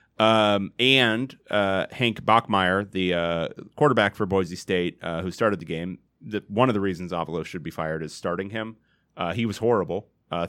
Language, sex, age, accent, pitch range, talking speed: English, male, 30-49, American, 90-110 Hz, 190 wpm